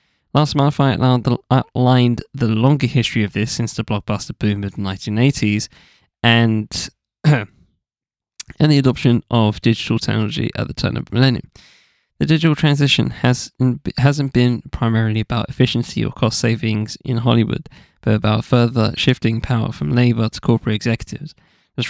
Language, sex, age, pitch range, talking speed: English, male, 10-29, 115-135 Hz, 150 wpm